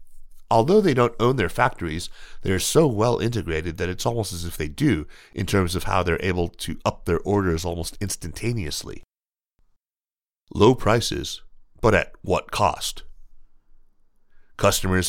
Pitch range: 85-110 Hz